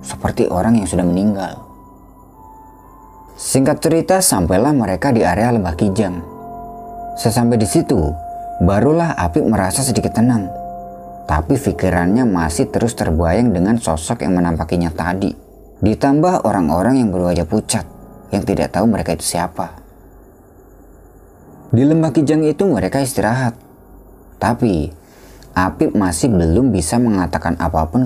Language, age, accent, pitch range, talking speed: Indonesian, 30-49, native, 90-125 Hz, 120 wpm